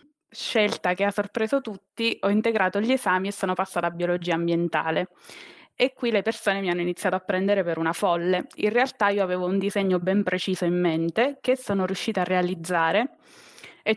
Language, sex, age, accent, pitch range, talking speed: Italian, female, 20-39, native, 180-210 Hz, 185 wpm